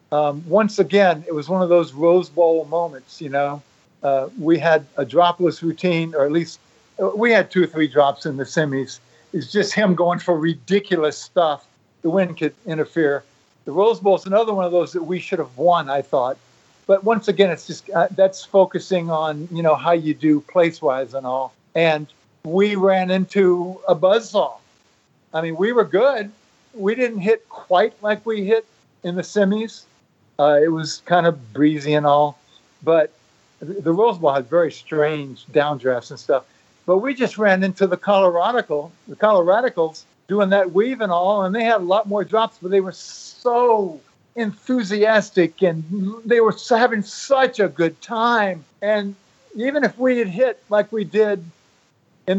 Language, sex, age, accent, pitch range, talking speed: English, male, 50-69, American, 155-205 Hz, 180 wpm